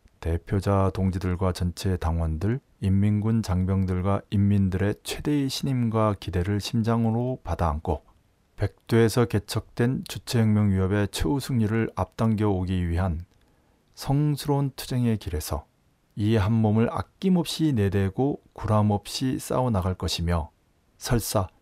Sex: male